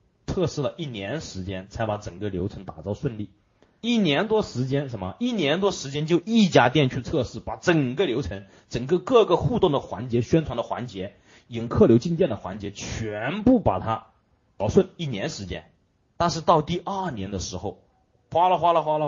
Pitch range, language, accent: 105-165 Hz, Chinese, native